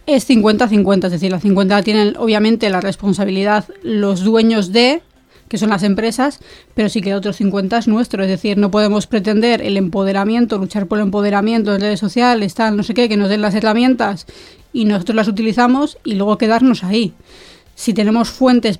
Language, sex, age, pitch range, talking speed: Spanish, female, 20-39, 205-240 Hz, 185 wpm